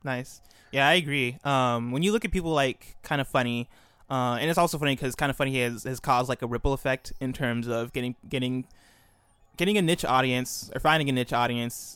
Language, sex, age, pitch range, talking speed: English, male, 20-39, 120-140 Hz, 220 wpm